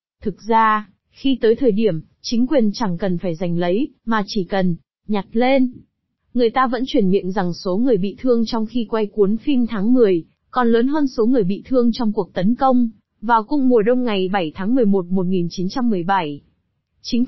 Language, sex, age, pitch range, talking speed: Vietnamese, female, 20-39, 195-250 Hz, 195 wpm